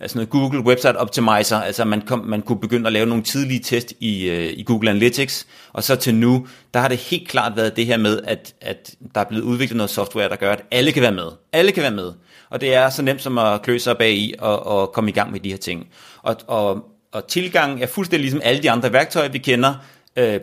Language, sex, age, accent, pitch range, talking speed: Danish, male, 30-49, native, 105-135 Hz, 255 wpm